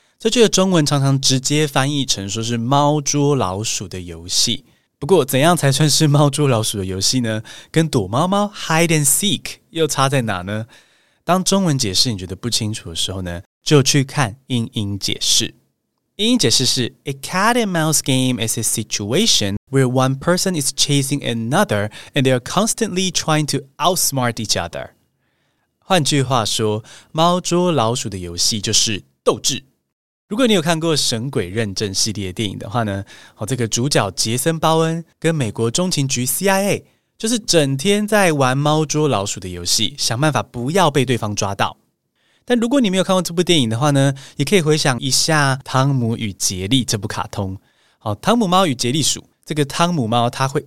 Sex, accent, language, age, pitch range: male, native, Chinese, 20-39, 110-160 Hz